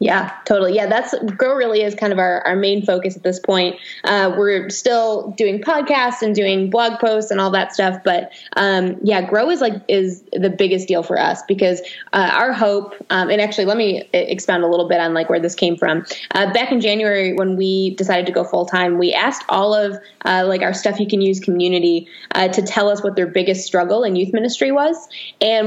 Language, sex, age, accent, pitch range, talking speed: English, female, 20-39, American, 185-215 Hz, 225 wpm